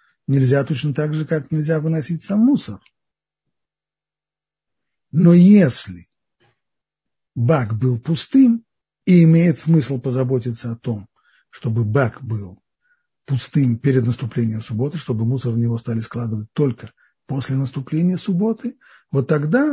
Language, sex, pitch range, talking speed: Russian, male, 120-170 Hz, 120 wpm